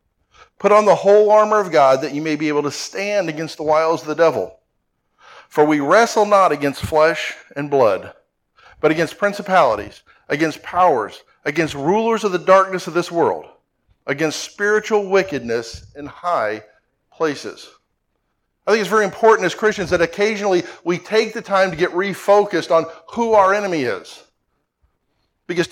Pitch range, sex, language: 165-215 Hz, male, English